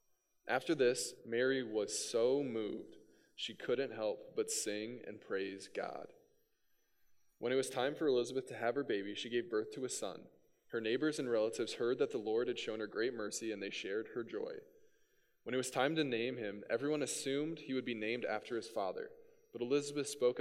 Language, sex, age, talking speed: English, male, 10-29, 195 wpm